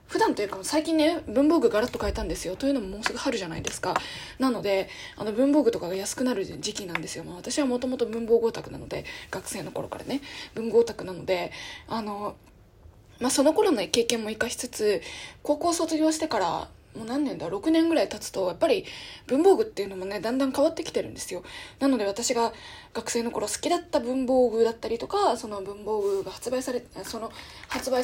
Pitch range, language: 210-290 Hz, Japanese